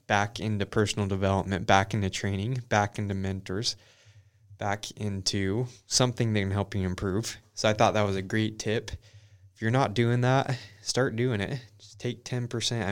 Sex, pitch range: male, 100-115 Hz